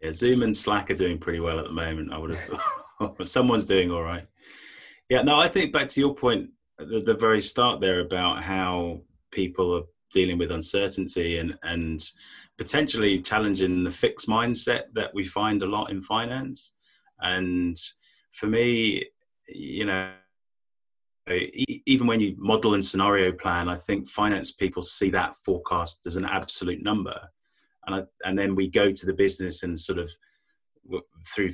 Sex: male